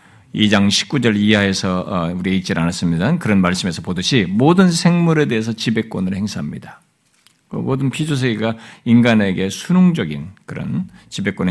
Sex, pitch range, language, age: male, 110-175 Hz, Korean, 50-69